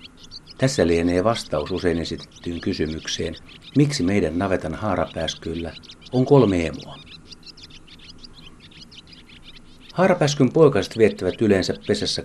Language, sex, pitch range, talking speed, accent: Finnish, male, 80-95 Hz, 90 wpm, native